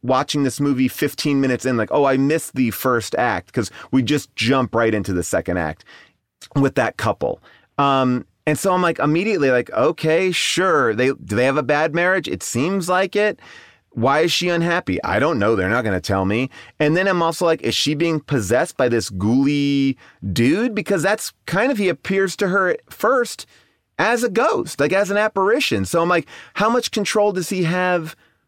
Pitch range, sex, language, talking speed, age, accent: 120-180 Hz, male, English, 205 wpm, 30-49, American